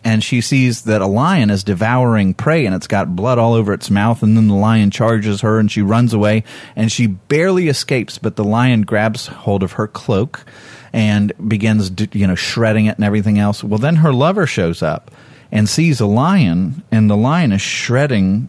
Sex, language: male, English